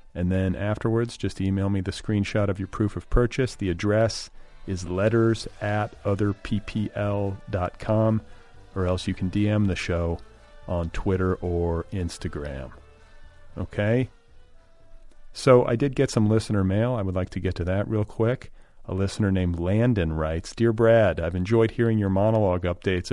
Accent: American